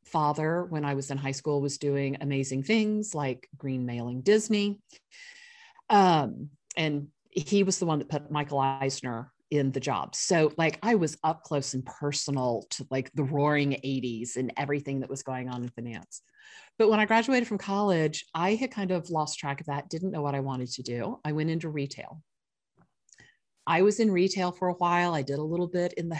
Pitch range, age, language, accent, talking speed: 145-210 Hz, 40-59, English, American, 200 wpm